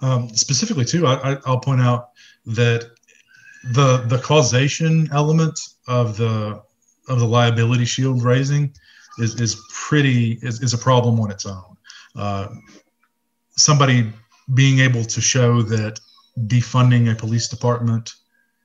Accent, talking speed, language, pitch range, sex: American, 130 wpm, English, 115-130 Hz, male